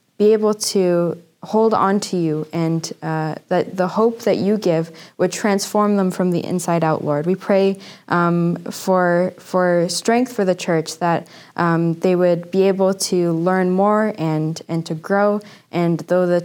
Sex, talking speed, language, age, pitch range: female, 175 wpm, English, 10-29, 165-190 Hz